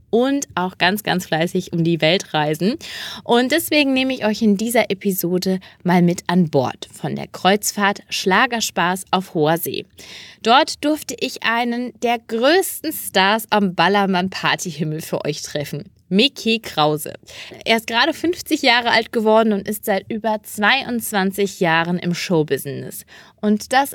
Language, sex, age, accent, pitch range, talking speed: German, female, 20-39, German, 175-230 Hz, 150 wpm